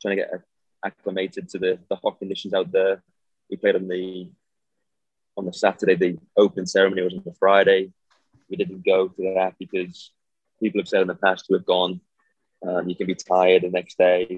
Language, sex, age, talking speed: English, male, 20-39, 200 wpm